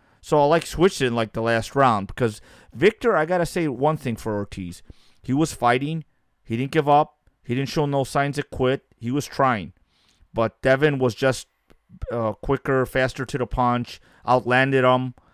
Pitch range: 115-140 Hz